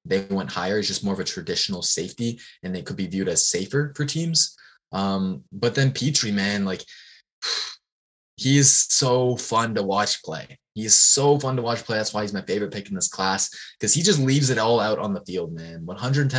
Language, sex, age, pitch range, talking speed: English, male, 20-39, 100-125 Hz, 220 wpm